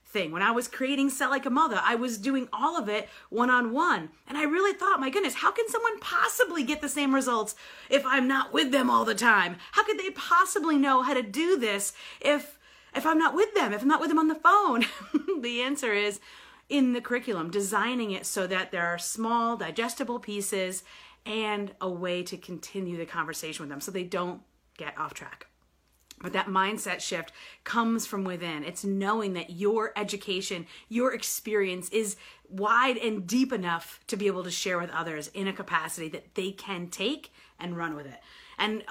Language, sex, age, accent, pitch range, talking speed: English, female, 30-49, American, 190-275 Hz, 200 wpm